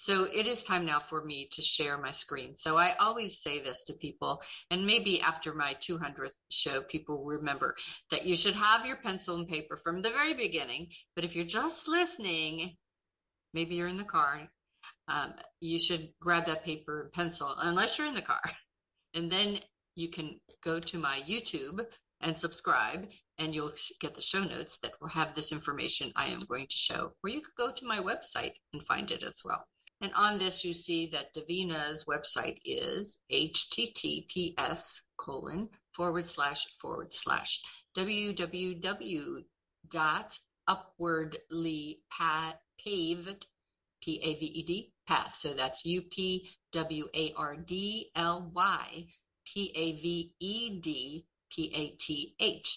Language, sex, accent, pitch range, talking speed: English, female, American, 155-195 Hz, 140 wpm